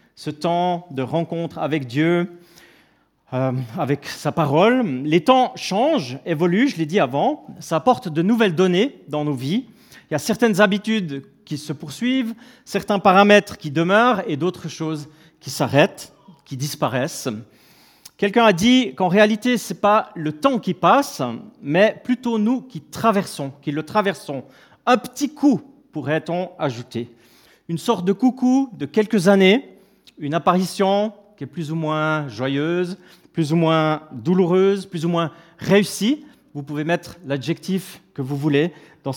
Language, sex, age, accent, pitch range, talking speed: French, male, 40-59, French, 155-225 Hz, 155 wpm